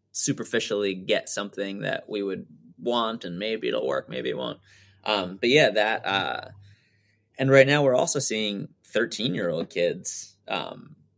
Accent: American